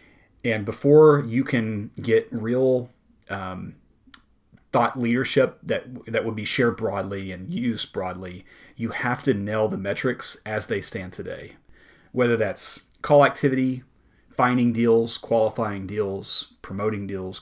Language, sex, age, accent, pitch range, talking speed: English, male, 30-49, American, 100-120 Hz, 130 wpm